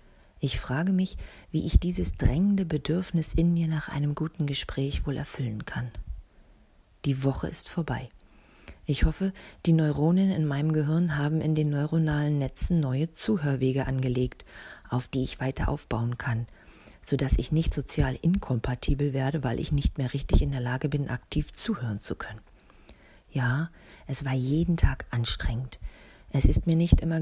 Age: 40-59